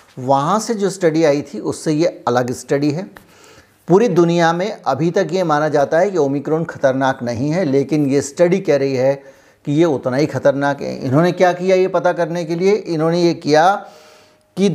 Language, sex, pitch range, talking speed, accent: Hindi, male, 135-170 Hz, 200 wpm, native